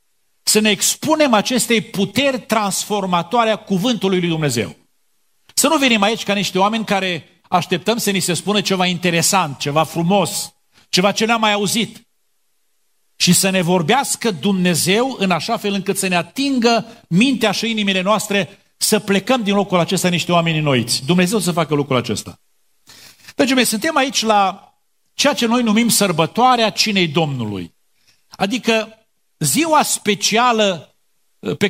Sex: male